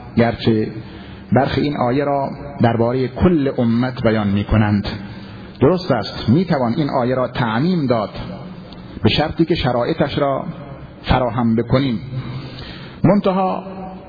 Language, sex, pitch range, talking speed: Persian, male, 110-145 Hz, 120 wpm